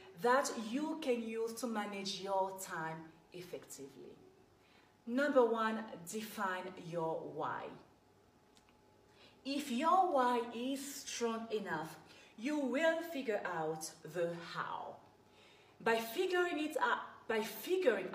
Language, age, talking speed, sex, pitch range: English, 40-59, 105 wpm, female, 190-260 Hz